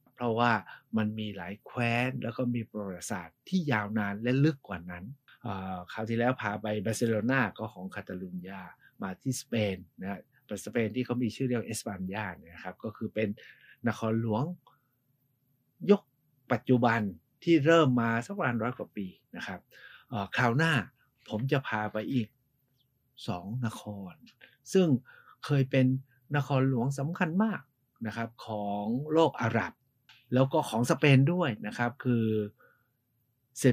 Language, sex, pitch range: Thai, male, 110-135 Hz